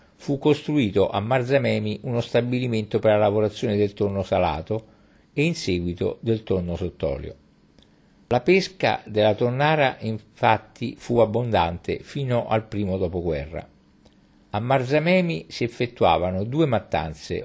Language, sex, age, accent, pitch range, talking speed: Italian, male, 50-69, native, 100-130 Hz, 120 wpm